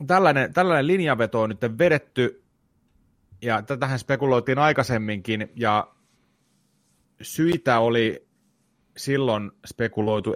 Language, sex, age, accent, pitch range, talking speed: Finnish, male, 30-49, native, 100-130 Hz, 85 wpm